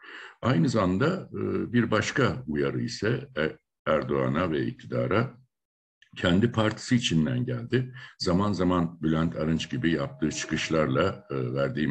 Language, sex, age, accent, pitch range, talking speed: Turkish, male, 60-79, native, 65-110 Hz, 105 wpm